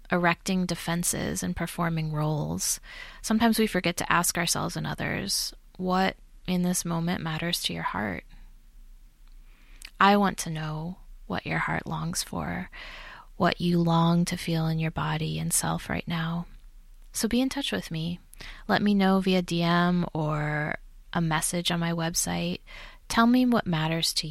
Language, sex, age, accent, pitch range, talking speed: English, female, 20-39, American, 165-200 Hz, 160 wpm